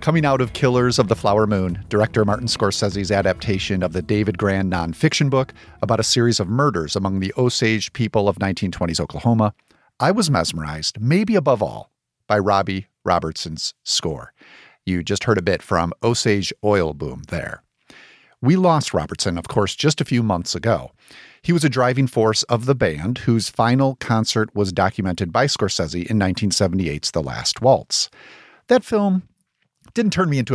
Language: English